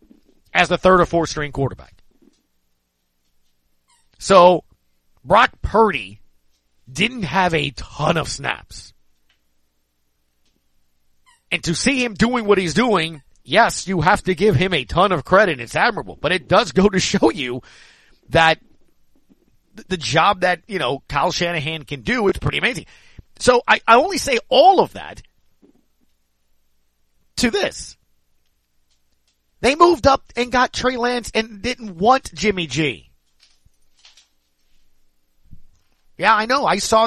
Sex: male